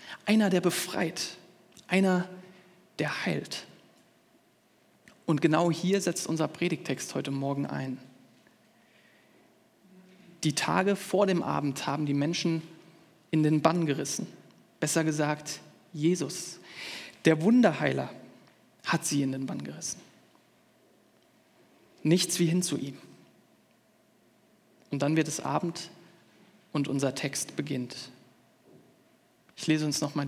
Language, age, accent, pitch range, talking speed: German, 30-49, German, 145-180 Hz, 115 wpm